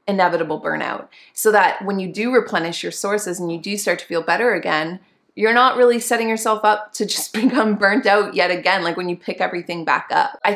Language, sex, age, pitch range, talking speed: English, female, 20-39, 165-205 Hz, 220 wpm